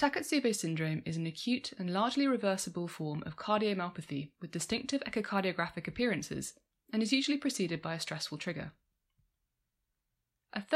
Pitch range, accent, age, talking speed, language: 155-215 Hz, British, 20-39, 135 wpm, English